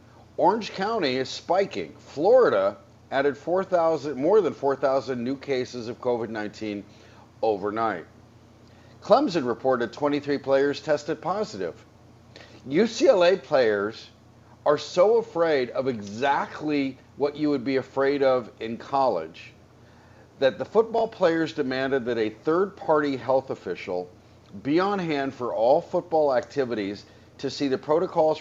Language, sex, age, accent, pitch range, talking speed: English, male, 50-69, American, 115-150 Hz, 125 wpm